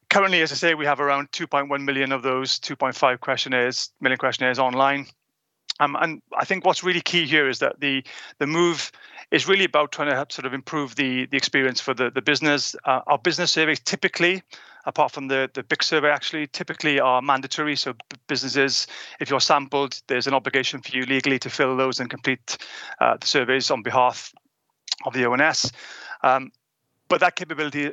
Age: 30-49